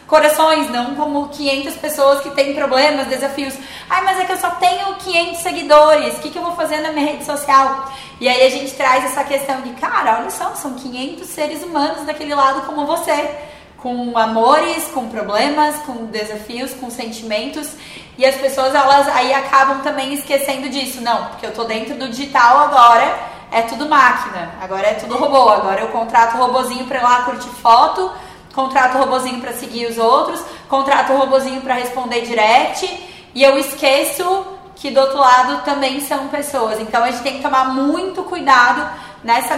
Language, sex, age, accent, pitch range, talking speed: Portuguese, female, 10-29, Brazilian, 245-290 Hz, 180 wpm